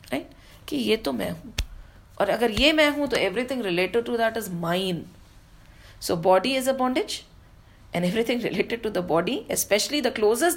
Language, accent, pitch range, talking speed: English, Indian, 185-280 Hz, 165 wpm